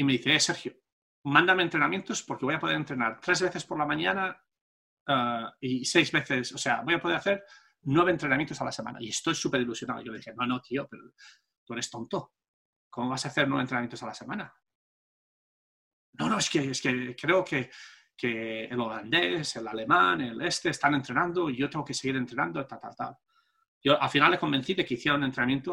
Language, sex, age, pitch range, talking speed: English, male, 40-59, 125-155 Hz, 210 wpm